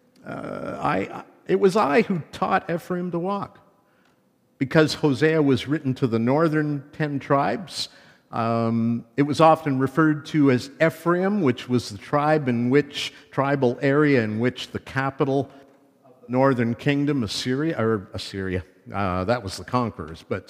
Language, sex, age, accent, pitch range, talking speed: English, male, 50-69, American, 125-170 Hz, 145 wpm